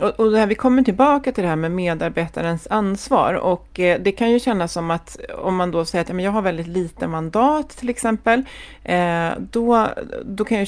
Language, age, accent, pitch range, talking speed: Swedish, 30-49, native, 165-225 Hz, 195 wpm